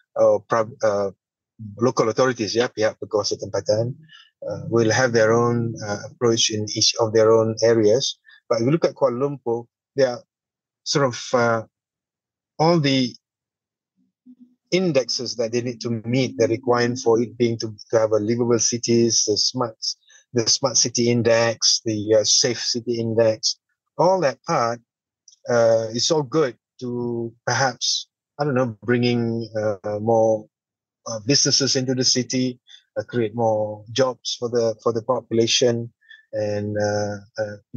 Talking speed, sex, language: 145 wpm, male, English